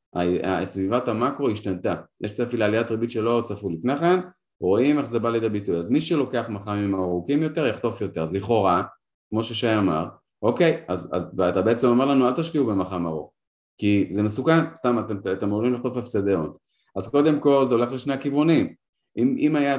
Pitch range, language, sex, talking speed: 95-120 Hz, Hebrew, male, 180 wpm